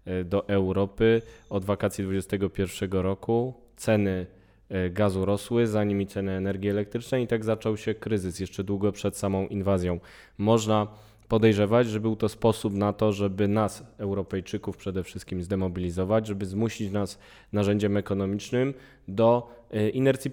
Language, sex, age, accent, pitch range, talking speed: Polish, male, 20-39, native, 95-110 Hz, 135 wpm